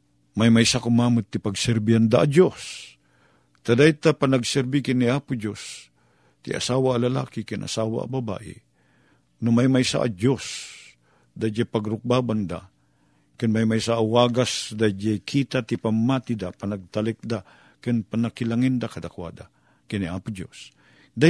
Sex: male